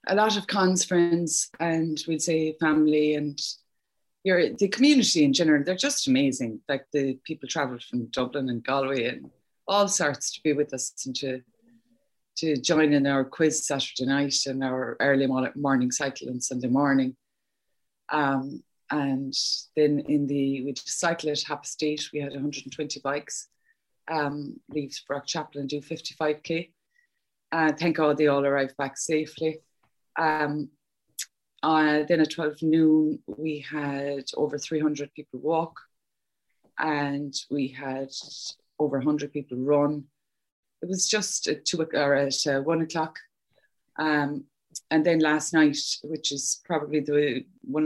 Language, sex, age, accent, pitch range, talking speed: English, female, 20-39, Irish, 135-155 Hz, 145 wpm